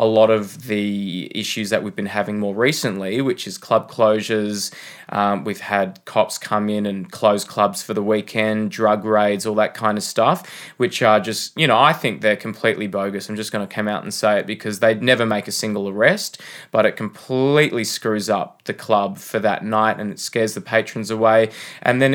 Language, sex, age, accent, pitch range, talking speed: English, male, 20-39, Australian, 105-110 Hz, 210 wpm